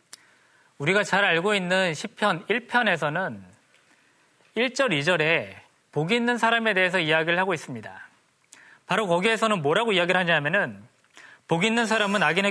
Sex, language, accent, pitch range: male, Korean, native, 155-220 Hz